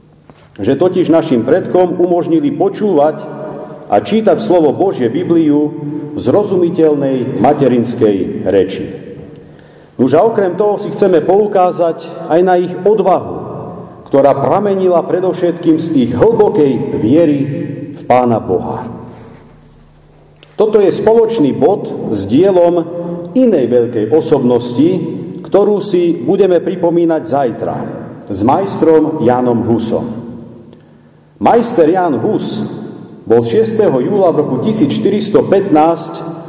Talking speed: 100 wpm